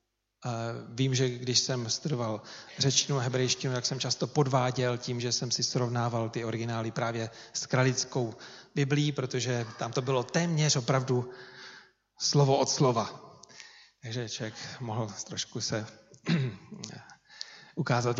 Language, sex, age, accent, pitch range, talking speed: Czech, male, 40-59, native, 125-145 Hz, 125 wpm